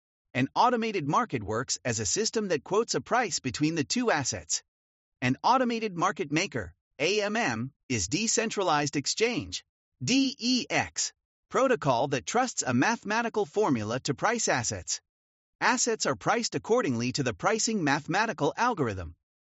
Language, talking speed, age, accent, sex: English, 130 wpm, 30-49, American, male